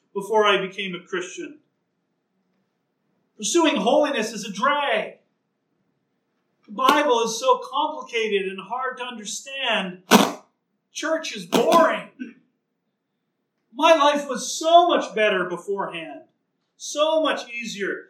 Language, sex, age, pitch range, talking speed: English, male, 40-59, 185-255 Hz, 105 wpm